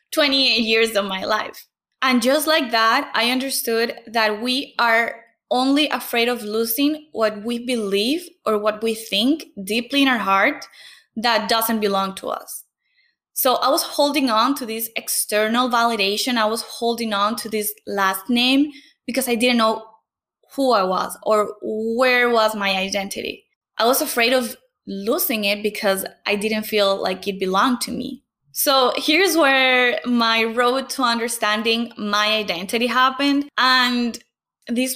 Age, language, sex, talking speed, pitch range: 10-29, English, female, 155 wpm, 215-265 Hz